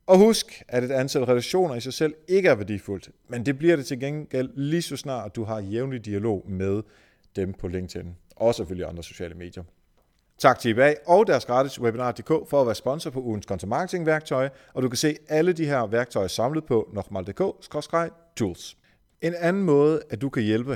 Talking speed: 195 wpm